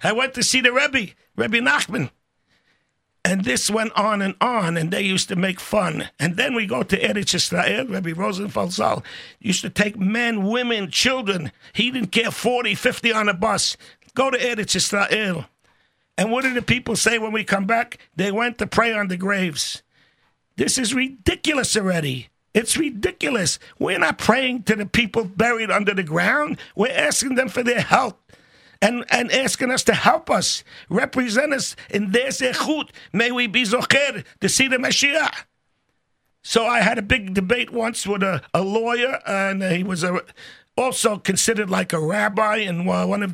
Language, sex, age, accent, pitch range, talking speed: English, male, 60-79, American, 190-245 Hz, 180 wpm